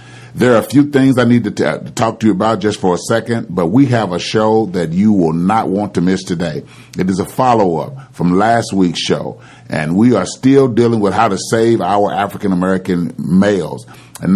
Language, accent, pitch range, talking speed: English, American, 95-120 Hz, 215 wpm